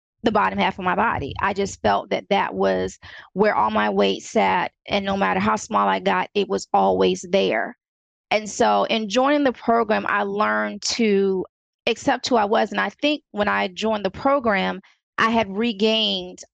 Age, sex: 30-49, female